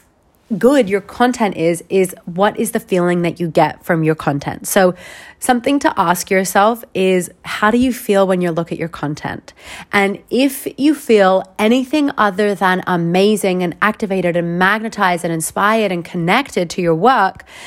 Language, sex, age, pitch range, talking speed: English, female, 30-49, 175-215 Hz, 170 wpm